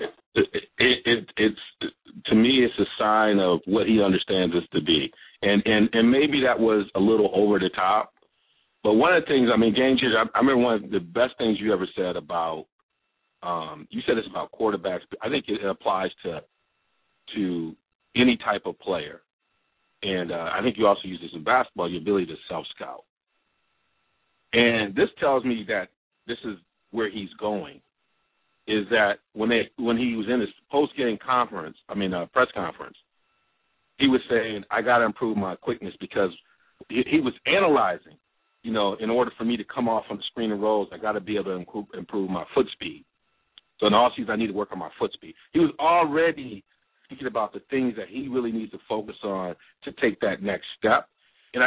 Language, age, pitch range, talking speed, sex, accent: English, 50-69, 105-130 Hz, 205 wpm, male, American